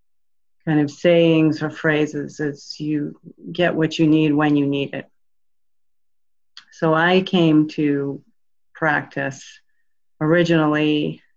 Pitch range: 145-165 Hz